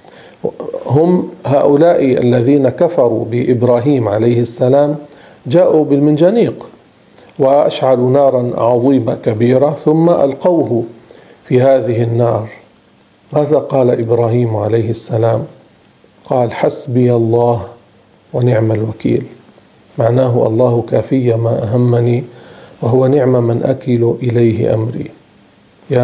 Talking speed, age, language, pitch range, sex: 90 wpm, 40-59, Arabic, 120-150 Hz, male